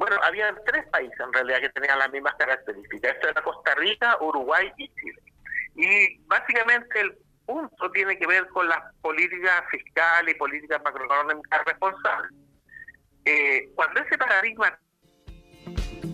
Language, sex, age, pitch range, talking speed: Spanish, male, 50-69, 160-240 Hz, 140 wpm